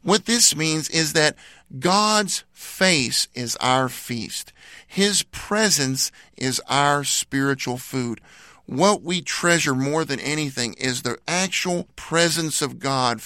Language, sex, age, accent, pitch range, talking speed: English, male, 50-69, American, 130-180 Hz, 125 wpm